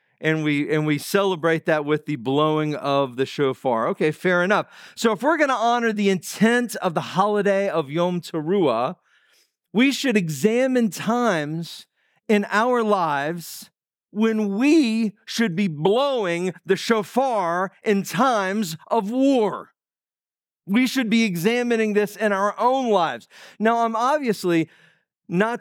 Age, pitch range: 50-69, 175-225 Hz